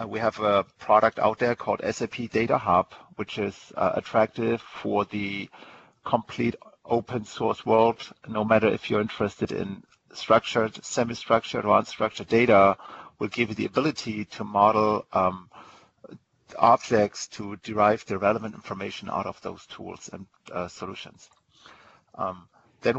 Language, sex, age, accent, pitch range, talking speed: English, male, 50-69, German, 105-120 Hz, 140 wpm